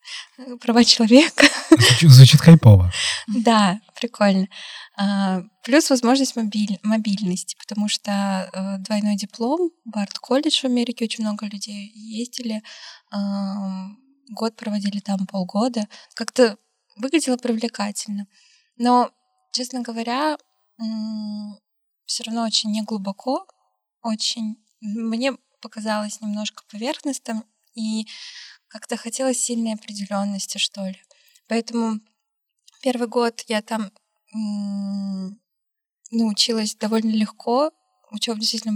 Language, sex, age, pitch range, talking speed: Russian, female, 20-39, 205-240 Hz, 90 wpm